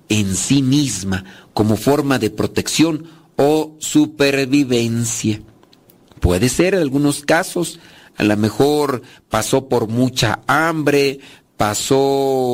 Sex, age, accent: male, 50-69, Mexican